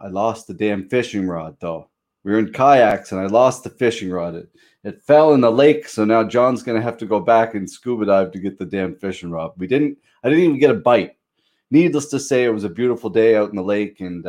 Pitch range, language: 105-140 Hz, English